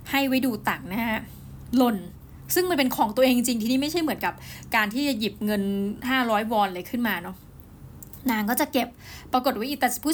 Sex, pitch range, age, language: female, 205-260 Hz, 20-39, Thai